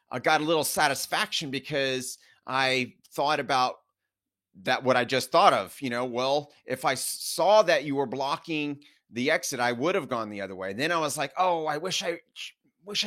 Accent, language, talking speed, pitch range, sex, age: American, English, 200 wpm, 125-160 Hz, male, 30-49